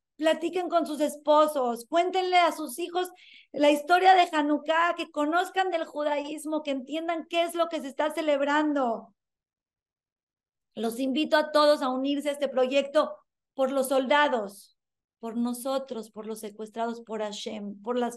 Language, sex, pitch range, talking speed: Spanish, female, 270-325 Hz, 150 wpm